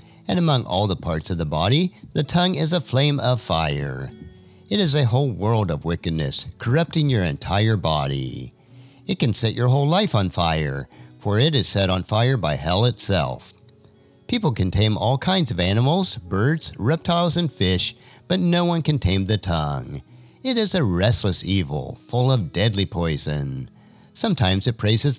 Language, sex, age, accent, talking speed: English, male, 50-69, American, 175 wpm